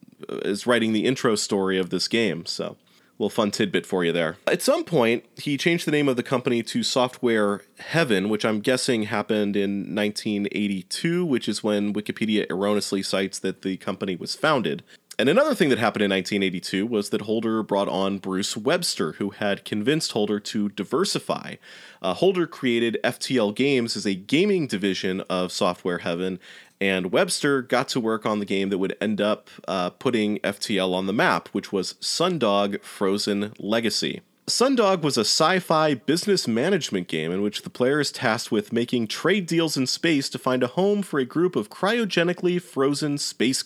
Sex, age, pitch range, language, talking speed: male, 30-49, 100-140 Hz, English, 180 wpm